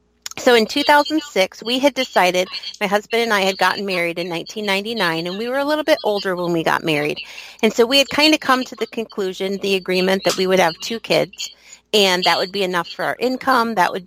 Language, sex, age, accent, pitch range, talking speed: English, female, 40-59, American, 180-230 Hz, 230 wpm